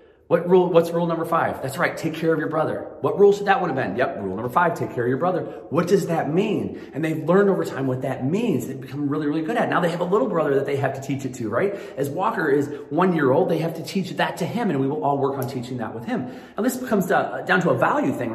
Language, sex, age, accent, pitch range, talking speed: English, male, 30-49, American, 130-180 Hz, 305 wpm